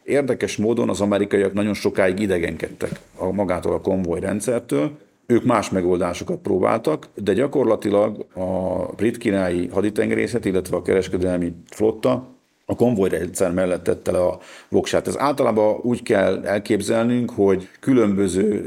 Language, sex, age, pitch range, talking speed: Hungarian, male, 50-69, 95-110 Hz, 120 wpm